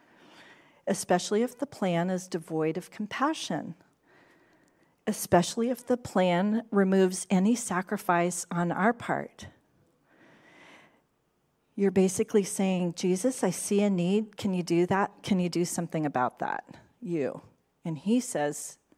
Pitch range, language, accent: 170-215 Hz, English, American